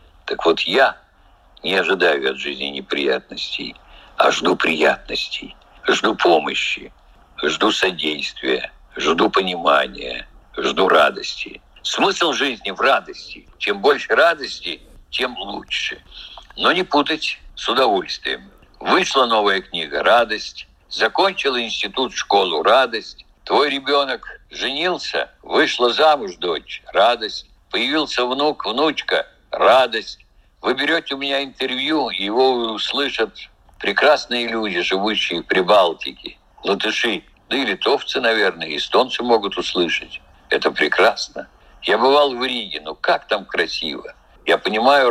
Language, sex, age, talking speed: Russian, male, 60-79, 110 wpm